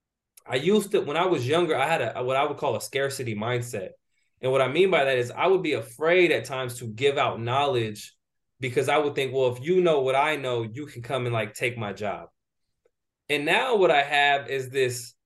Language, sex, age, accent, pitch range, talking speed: Italian, male, 20-39, American, 120-150 Hz, 235 wpm